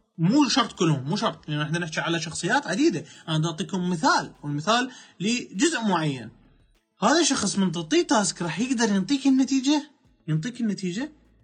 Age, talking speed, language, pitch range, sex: 20-39, 150 wpm, Arabic, 155-230 Hz, male